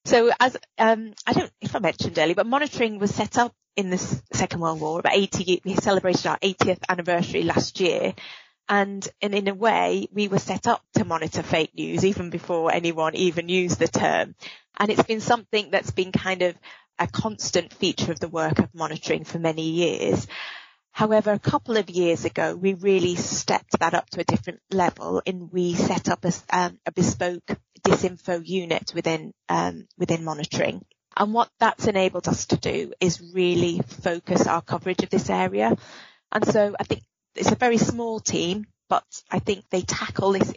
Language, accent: English, British